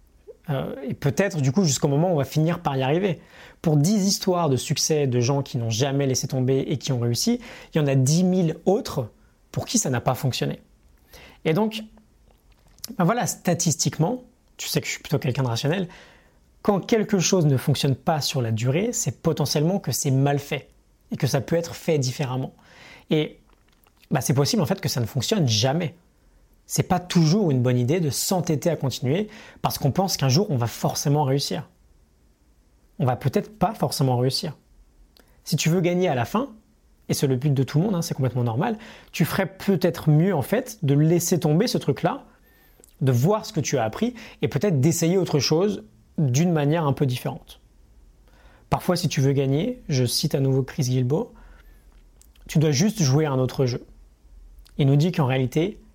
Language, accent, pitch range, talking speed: French, French, 130-180 Hz, 200 wpm